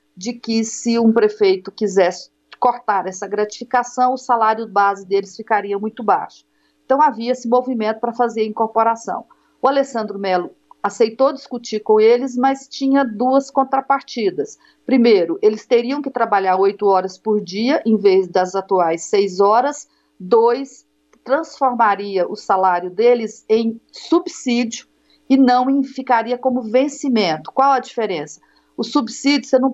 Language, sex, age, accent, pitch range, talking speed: Portuguese, female, 40-59, Brazilian, 205-255 Hz, 140 wpm